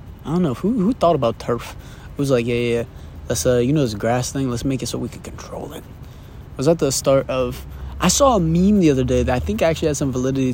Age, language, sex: 20-39, English, male